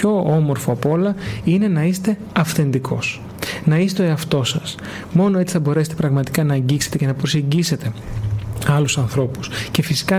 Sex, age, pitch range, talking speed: male, 30-49, 140-170 Hz, 160 wpm